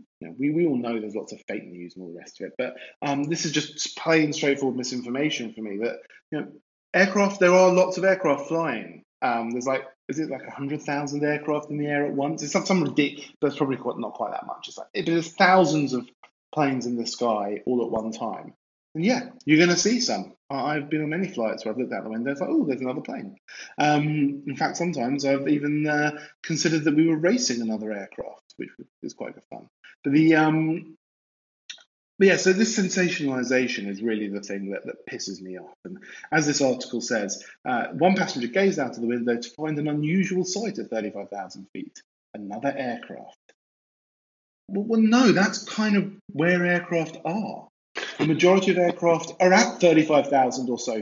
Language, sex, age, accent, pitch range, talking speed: English, male, 20-39, British, 125-180 Hz, 210 wpm